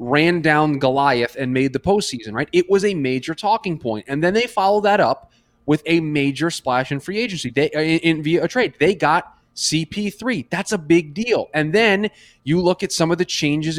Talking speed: 215 wpm